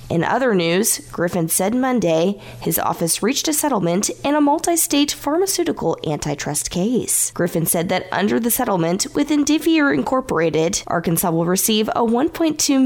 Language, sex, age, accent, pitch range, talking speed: English, female, 20-39, American, 175-275 Hz, 145 wpm